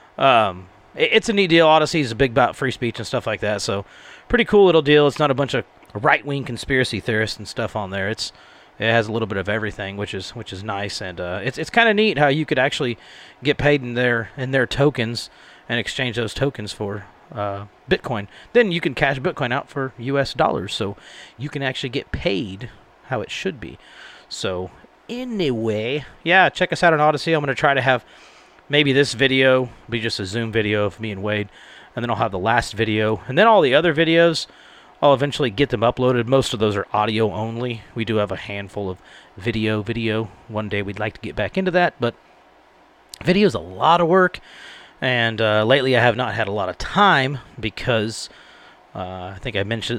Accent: American